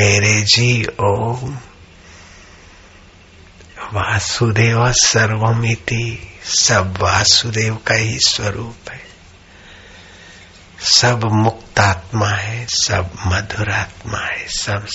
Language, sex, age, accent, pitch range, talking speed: Hindi, male, 60-79, native, 90-105 Hz, 70 wpm